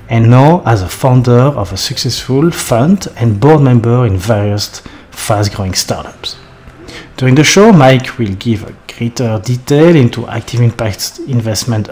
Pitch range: 105-140 Hz